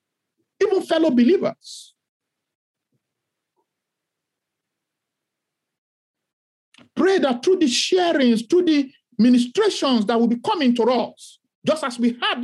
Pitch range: 180-275 Hz